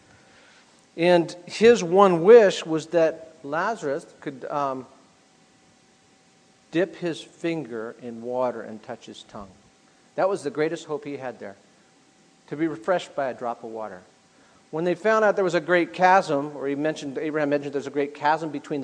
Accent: American